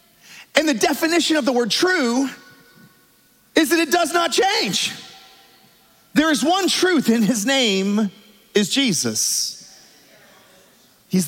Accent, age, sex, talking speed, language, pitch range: American, 40-59, male, 120 wpm, English, 175-235 Hz